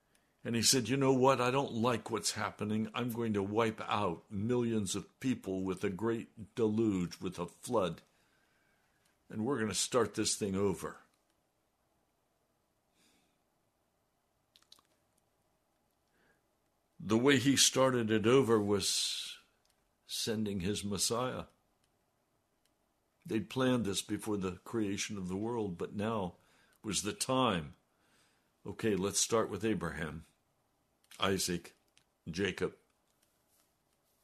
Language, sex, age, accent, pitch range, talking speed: English, male, 60-79, American, 100-120 Hz, 115 wpm